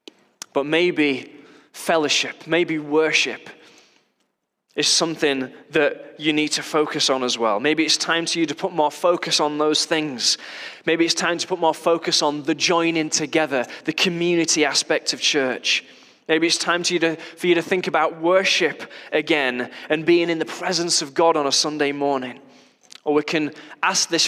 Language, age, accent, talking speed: English, 20-39, British, 180 wpm